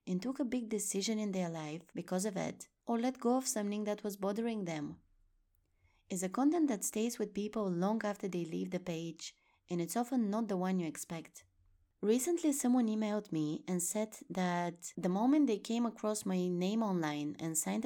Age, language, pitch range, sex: 20-39, English, 165-225 Hz, female